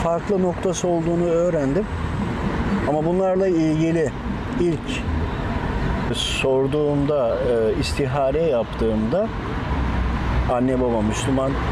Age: 50-69